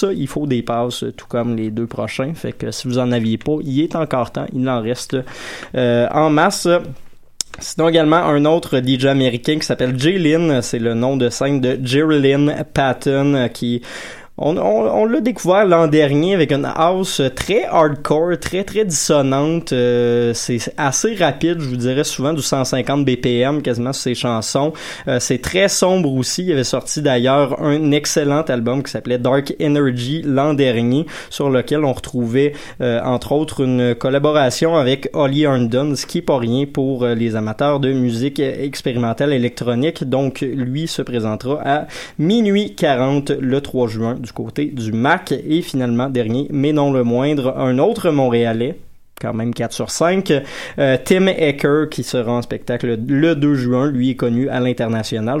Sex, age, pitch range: male, 20-39, 125-150 Hz